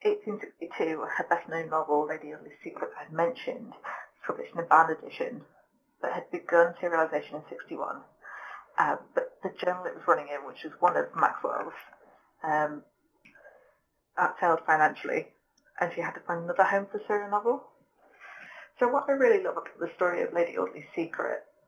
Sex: female